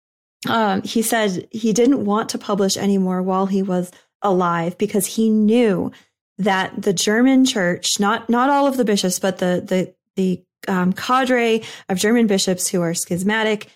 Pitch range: 185-225 Hz